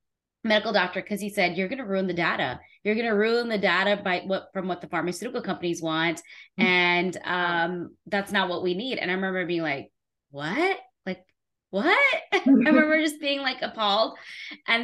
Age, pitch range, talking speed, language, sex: 20-39, 175-210 Hz, 180 wpm, English, female